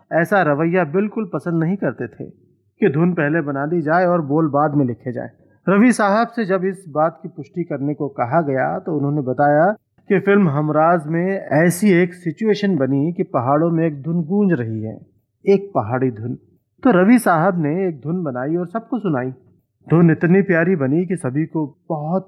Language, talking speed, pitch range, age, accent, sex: Hindi, 190 wpm, 140-180 Hz, 40-59, native, male